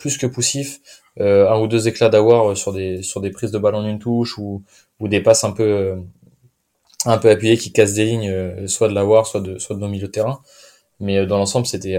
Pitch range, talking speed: 95-115 Hz, 235 wpm